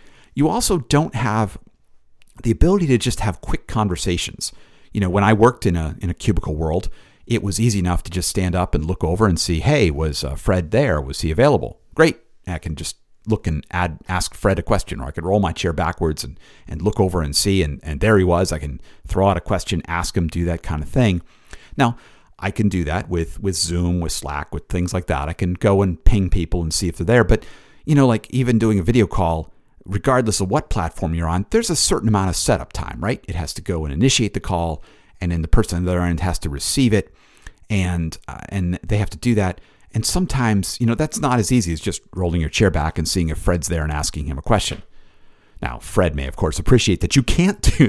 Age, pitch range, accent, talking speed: 50-69, 85-110 Hz, American, 245 wpm